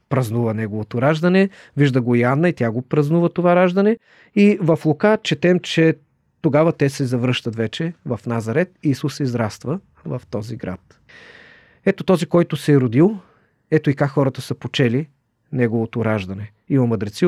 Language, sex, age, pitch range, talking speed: Bulgarian, male, 40-59, 125-160 Hz, 155 wpm